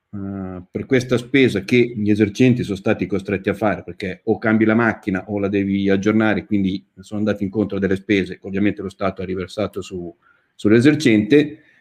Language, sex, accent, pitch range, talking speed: Italian, male, native, 100-135 Hz, 180 wpm